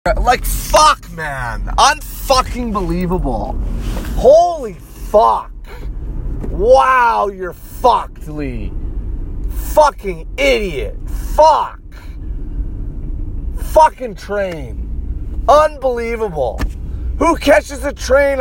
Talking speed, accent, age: 70 wpm, American, 30-49